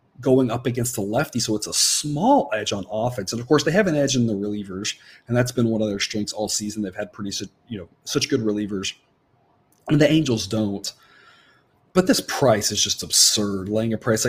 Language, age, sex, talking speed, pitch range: English, 30-49, male, 220 wpm, 105-140 Hz